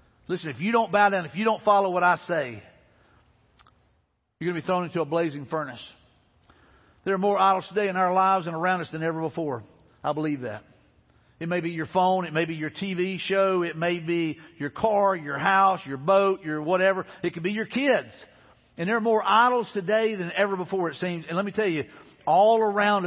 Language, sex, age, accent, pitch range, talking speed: English, male, 50-69, American, 165-210 Hz, 220 wpm